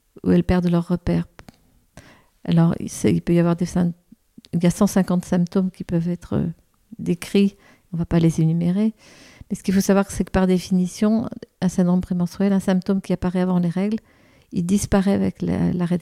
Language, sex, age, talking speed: French, female, 50-69, 185 wpm